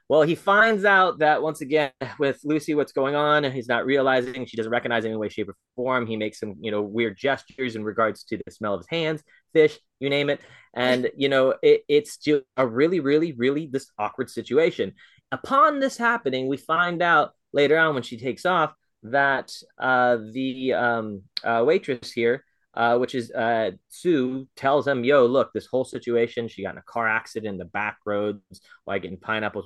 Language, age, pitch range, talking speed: English, 20-39, 110-140 Hz, 205 wpm